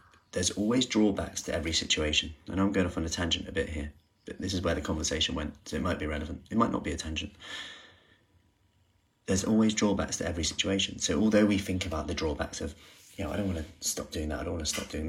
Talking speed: 250 wpm